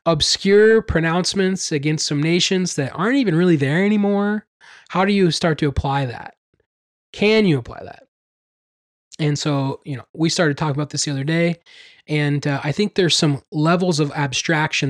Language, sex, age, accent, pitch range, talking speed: English, male, 20-39, American, 135-170 Hz, 175 wpm